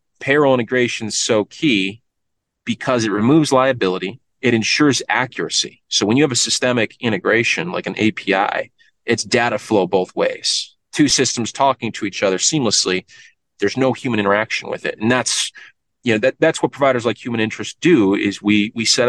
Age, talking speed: 30-49, 175 wpm